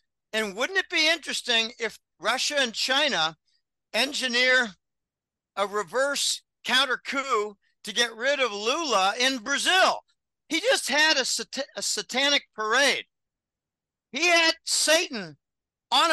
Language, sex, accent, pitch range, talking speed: English, male, American, 205-265 Hz, 125 wpm